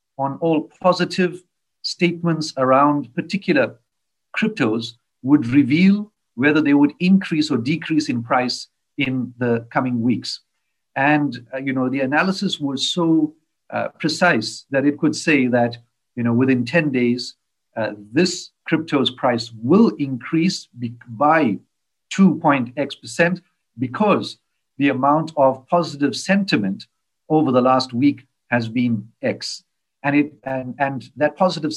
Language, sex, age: English, male, 50-69